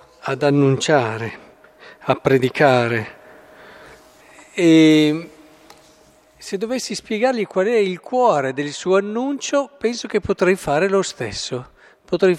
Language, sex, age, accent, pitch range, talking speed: Italian, male, 50-69, native, 135-195 Hz, 105 wpm